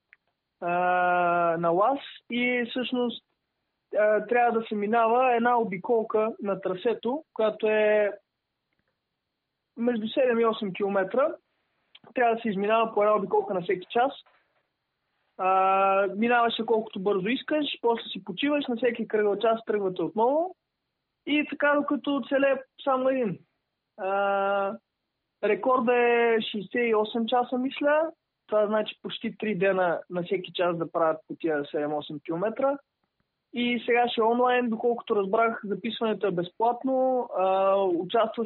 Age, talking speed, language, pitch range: 20-39, 130 wpm, Bulgarian, 190-240 Hz